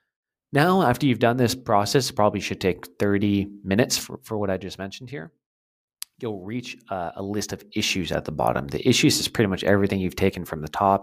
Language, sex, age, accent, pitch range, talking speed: English, male, 30-49, American, 90-115 Hz, 210 wpm